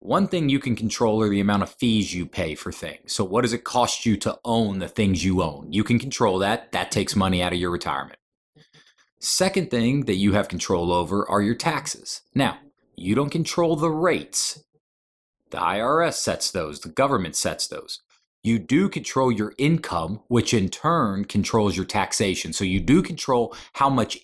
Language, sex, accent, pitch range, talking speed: English, male, American, 95-135 Hz, 195 wpm